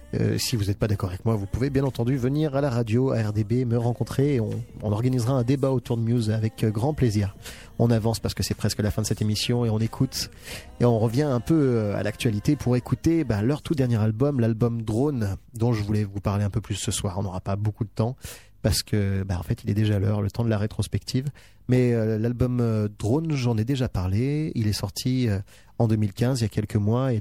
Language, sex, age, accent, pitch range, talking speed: French, male, 30-49, French, 105-125 Hz, 245 wpm